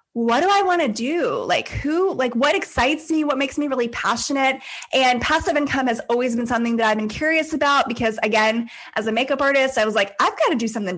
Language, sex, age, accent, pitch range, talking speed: English, female, 20-39, American, 230-285 Hz, 235 wpm